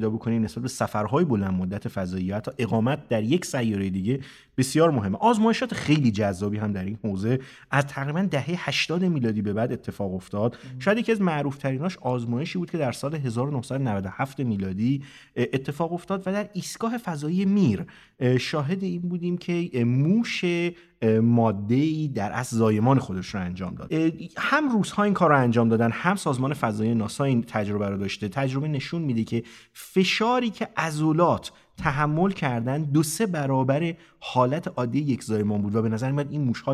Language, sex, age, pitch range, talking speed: Persian, male, 30-49, 115-170 Hz, 160 wpm